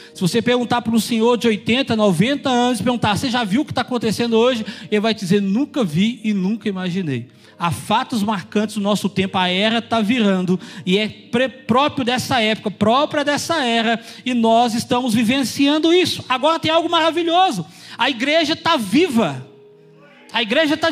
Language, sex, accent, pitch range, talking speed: Portuguese, male, Brazilian, 215-315 Hz, 175 wpm